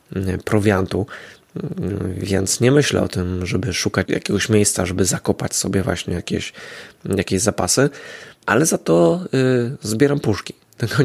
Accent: native